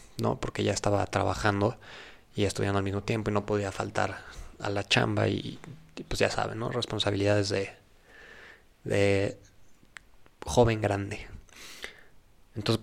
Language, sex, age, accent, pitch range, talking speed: Spanish, male, 20-39, Mexican, 100-115 Hz, 135 wpm